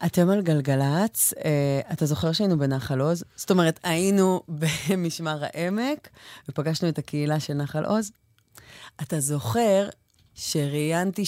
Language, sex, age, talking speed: English, female, 30-49, 115 wpm